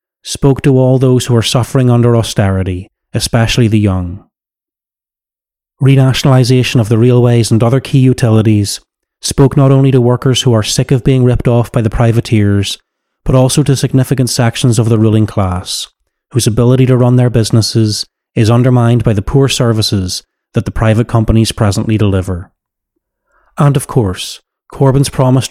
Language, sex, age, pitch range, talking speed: English, male, 30-49, 110-130 Hz, 160 wpm